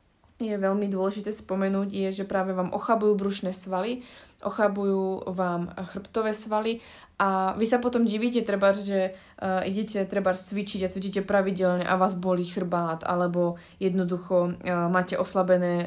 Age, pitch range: 20-39, 175-195 Hz